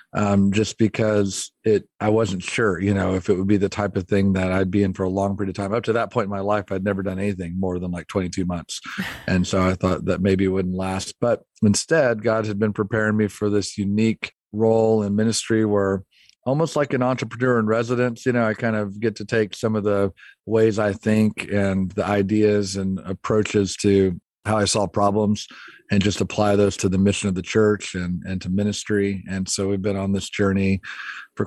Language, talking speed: English, 225 wpm